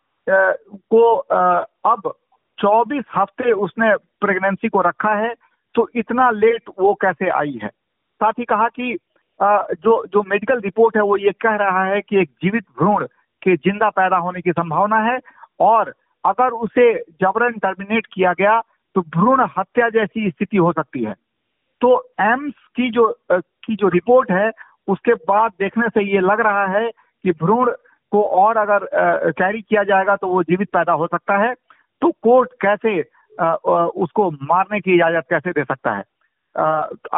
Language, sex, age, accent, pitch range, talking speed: Hindi, male, 50-69, native, 180-225 Hz, 160 wpm